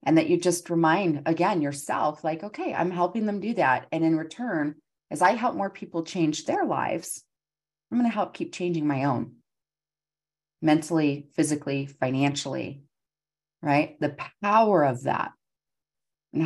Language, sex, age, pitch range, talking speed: English, female, 30-49, 140-165 Hz, 155 wpm